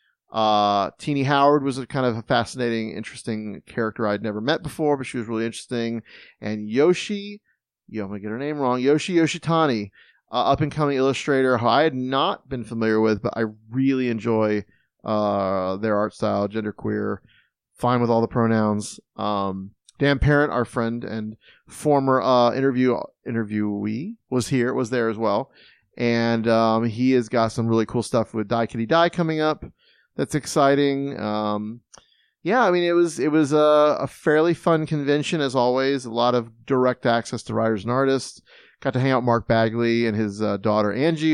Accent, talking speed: American, 180 wpm